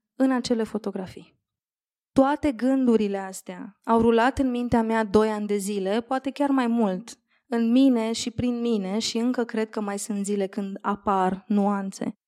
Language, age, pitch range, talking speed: Romanian, 20-39, 210-245 Hz, 165 wpm